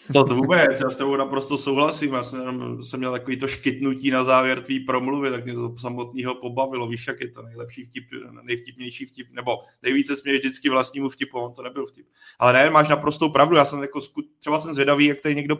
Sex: male